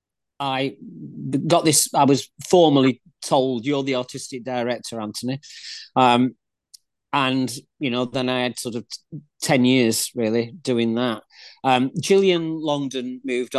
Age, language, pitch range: 40-59, English, 130-165 Hz